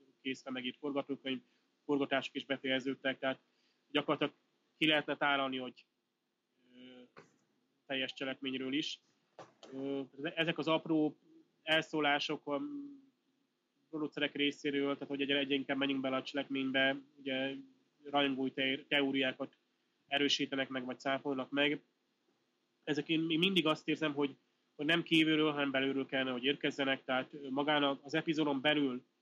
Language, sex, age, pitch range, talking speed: Hungarian, male, 20-39, 130-145 Hz, 120 wpm